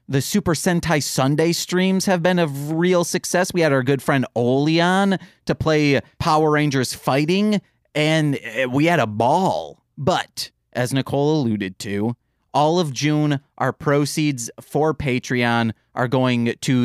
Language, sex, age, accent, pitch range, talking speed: English, male, 30-49, American, 130-185 Hz, 145 wpm